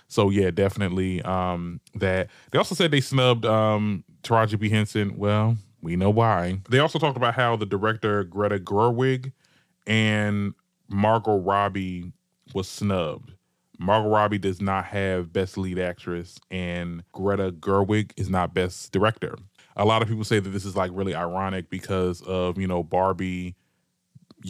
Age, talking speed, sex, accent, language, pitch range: 20-39, 155 wpm, male, American, English, 100-140 Hz